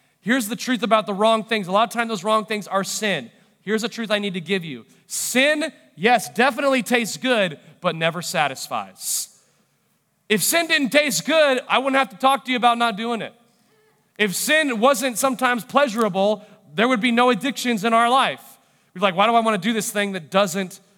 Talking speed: 210 wpm